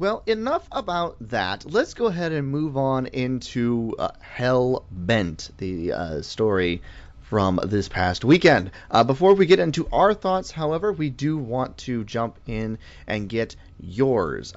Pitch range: 100-150 Hz